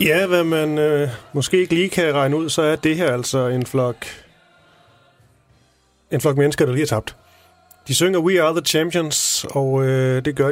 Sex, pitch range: male, 120-150 Hz